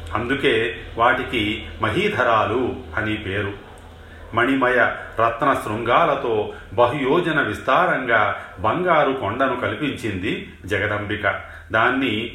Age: 40-59